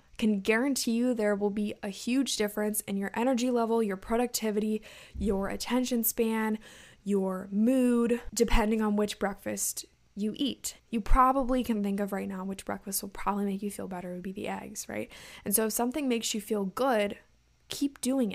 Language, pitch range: English, 200-230 Hz